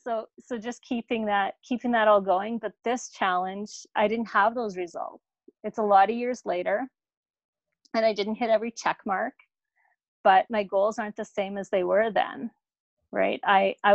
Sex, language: female, English